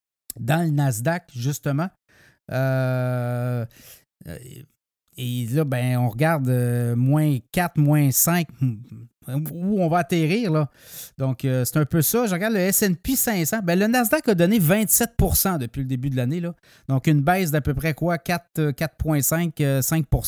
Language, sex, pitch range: French, male, 135-170 Hz